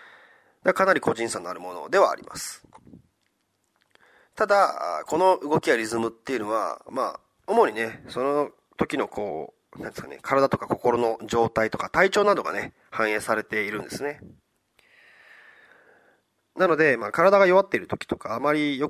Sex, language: male, Japanese